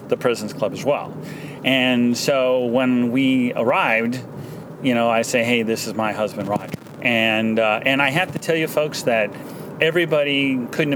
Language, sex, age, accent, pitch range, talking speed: English, male, 30-49, American, 115-140 Hz, 175 wpm